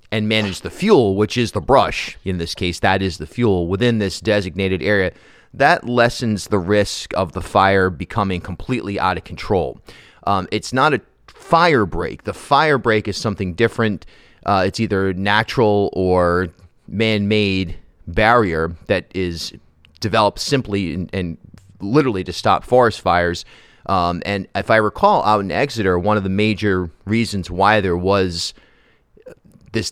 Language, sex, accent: English, male, American